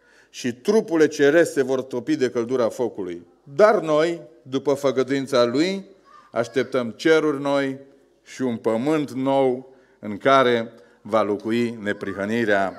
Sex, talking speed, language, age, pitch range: male, 115 wpm, Romanian, 40-59, 125-160 Hz